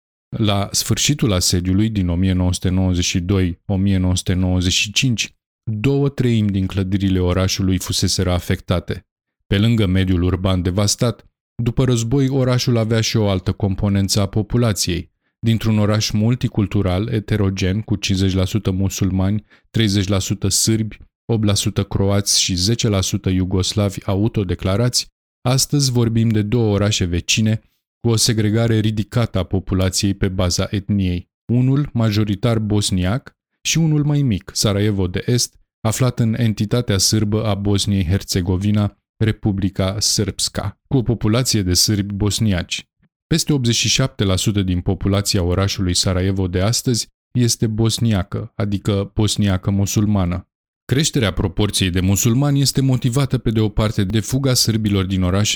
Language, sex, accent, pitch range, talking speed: Romanian, male, native, 95-115 Hz, 120 wpm